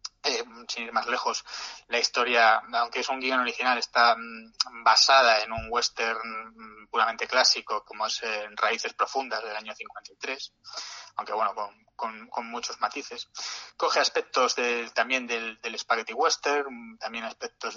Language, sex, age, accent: Spanish, male, 20-39, Spanish